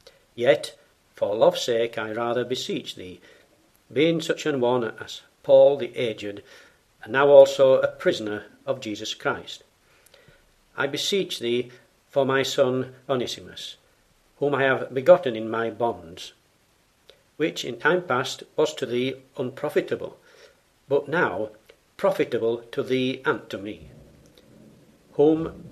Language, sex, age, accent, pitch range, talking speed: English, male, 60-79, British, 120-150 Hz, 130 wpm